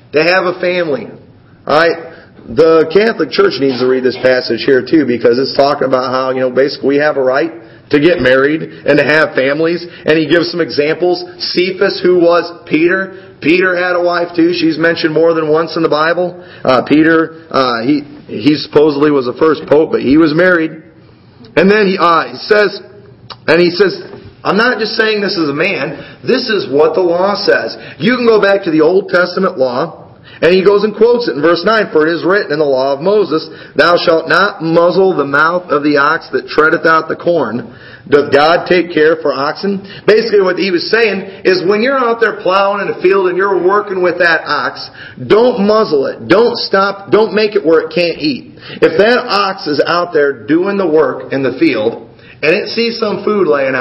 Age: 40-59